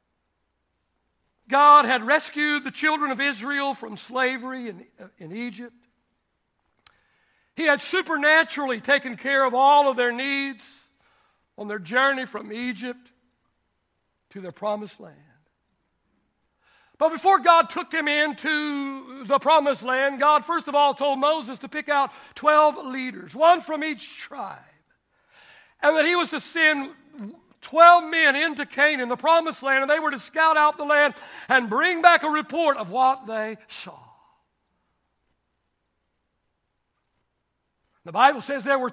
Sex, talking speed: male, 140 wpm